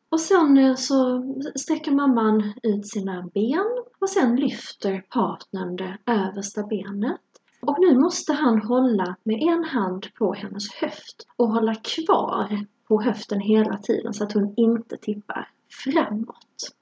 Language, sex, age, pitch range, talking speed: Swedish, female, 30-49, 205-250 Hz, 140 wpm